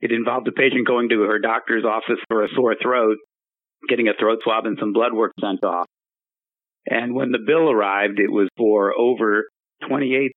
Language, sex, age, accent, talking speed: English, male, 50-69, American, 190 wpm